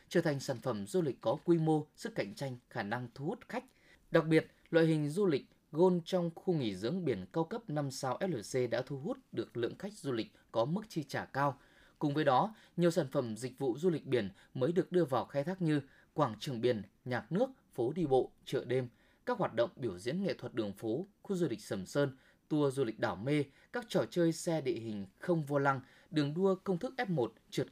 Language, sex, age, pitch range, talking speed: Vietnamese, male, 20-39, 130-185 Hz, 235 wpm